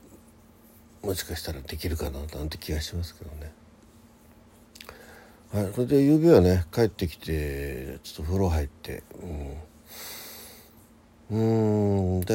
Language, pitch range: Japanese, 75-105 Hz